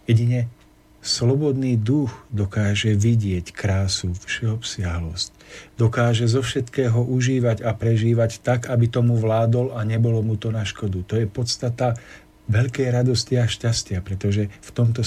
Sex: male